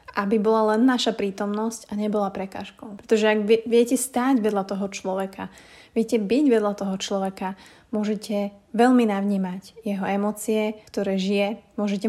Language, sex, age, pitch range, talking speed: Slovak, female, 20-39, 200-225 Hz, 140 wpm